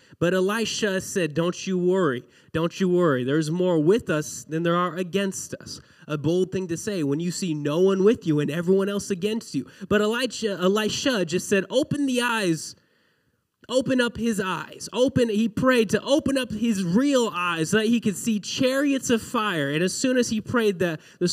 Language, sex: English, male